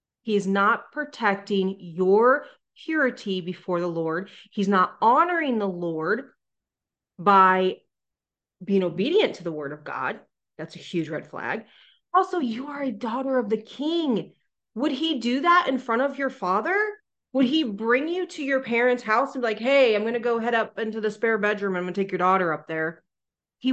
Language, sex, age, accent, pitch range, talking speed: English, female, 30-49, American, 190-260 Hz, 190 wpm